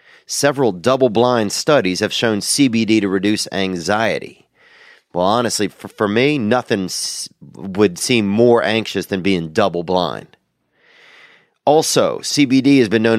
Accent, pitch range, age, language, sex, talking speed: American, 95-120 Hz, 30-49, English, male, 125 wpm